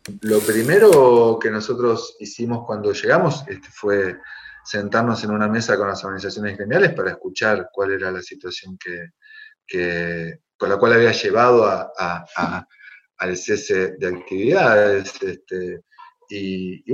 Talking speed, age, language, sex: 115 wpm, 30-49, Spanish, male